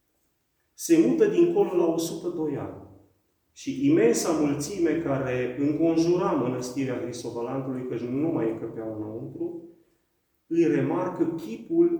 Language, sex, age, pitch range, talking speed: Romanian, male, 40-59, 125-180 Hz, 105 wpm